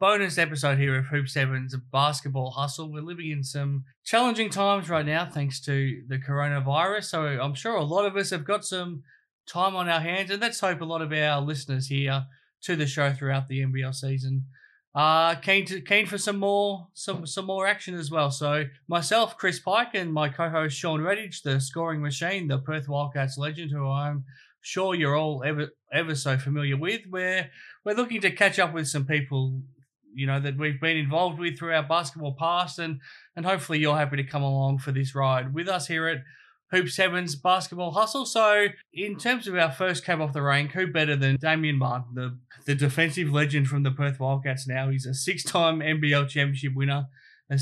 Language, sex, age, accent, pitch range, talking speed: English, male, 20-39, Australian, 140-175 Hz, 200 wpm